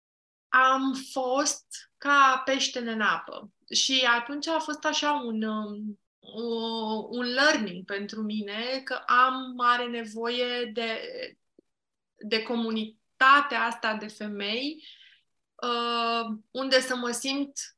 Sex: female